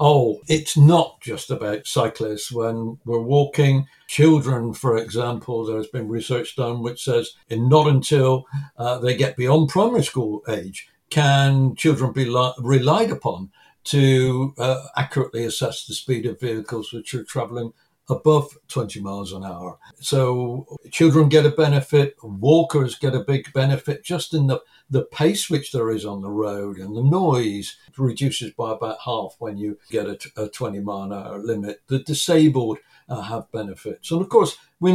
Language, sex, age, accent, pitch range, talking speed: English, male, 60-79, British, 120-150 Hz, 165 wpm